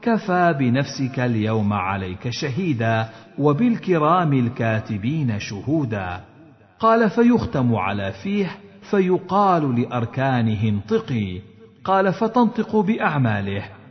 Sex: male